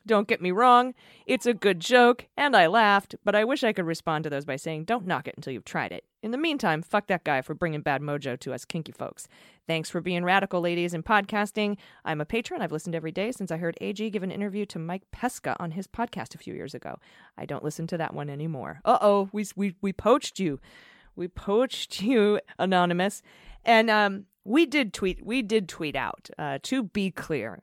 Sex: female